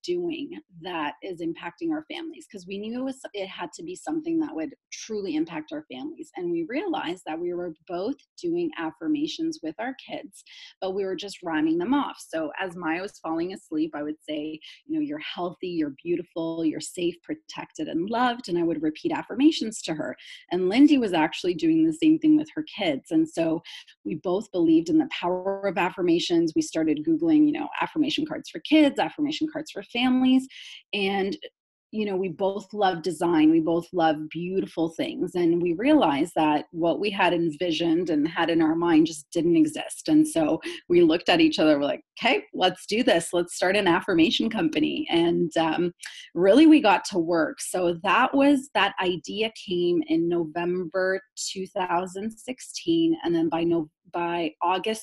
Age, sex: 30-49, female